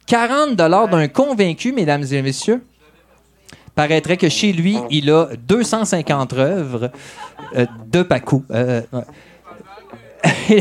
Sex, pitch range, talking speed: male, 165-230 Hz, 115 wpm